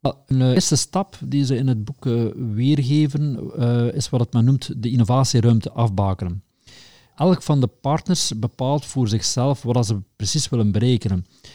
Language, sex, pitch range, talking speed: Dutch, male, 110-130 Hz, 150 wpm